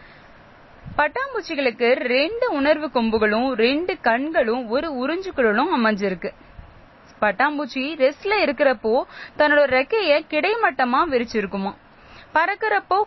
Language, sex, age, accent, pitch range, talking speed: Tamil, female, 20-39, native, 225-310 Hz, 70 wpm